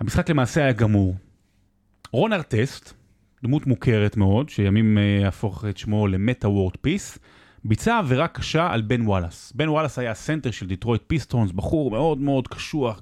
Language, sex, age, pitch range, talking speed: Hebrew, male, 30-49, 105-150 Hz, 155 wpm